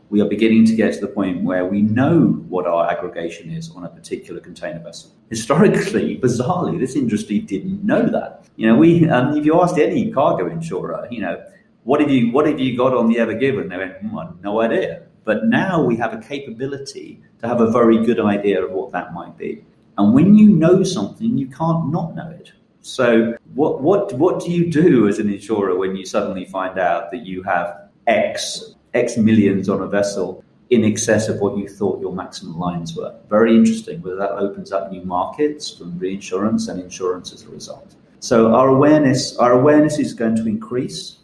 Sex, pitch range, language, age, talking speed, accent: male, 100-140 Hz, English, 30-49, 205 wpm, British